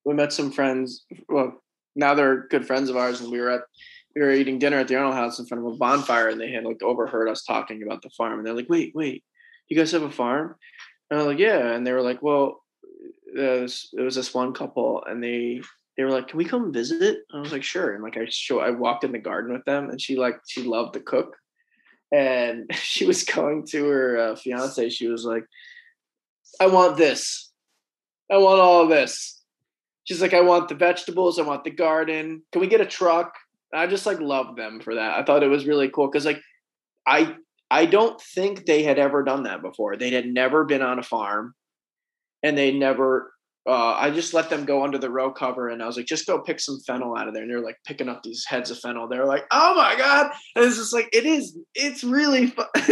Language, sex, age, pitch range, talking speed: English, male, 20-39, 130-195 Hz, 245 wpm